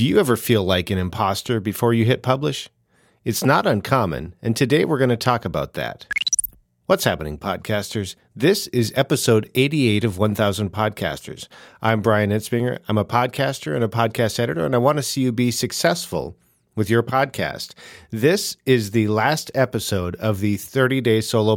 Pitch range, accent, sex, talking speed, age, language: 110-130 Hz, American, male, 175 wpm, 40-59, English